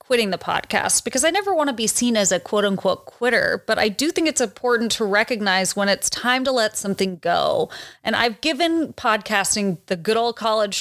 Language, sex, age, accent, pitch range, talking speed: English, female, 30-49, American, 200-240 Hz, 210 wpm